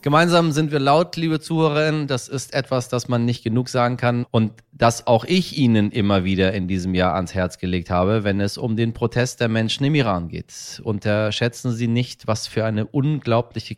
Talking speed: 200 wpm